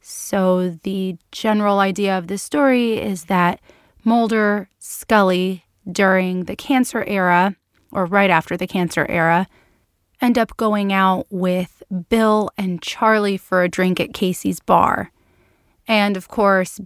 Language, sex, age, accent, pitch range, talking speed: English, female, 30-49, American, 185-220 Hz, 135 wpm